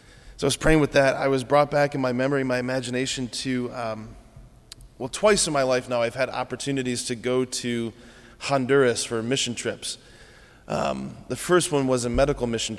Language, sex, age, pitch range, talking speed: English, male, 20-39, 120-135 Hz, 190 wpm